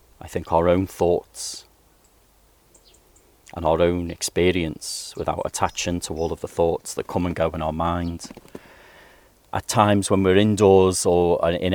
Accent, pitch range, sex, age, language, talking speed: British, 85-95 Hz, male, 30-49, English, 155 wpm